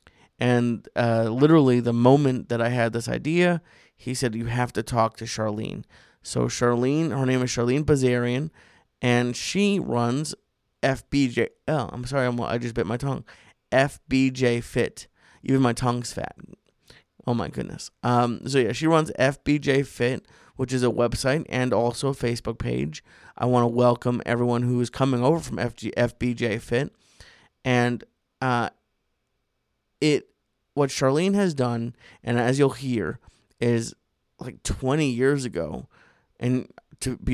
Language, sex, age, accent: English, male, 30-49, American